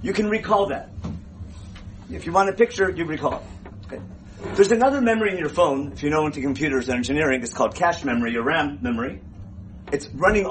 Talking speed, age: 195 wpm, 40-59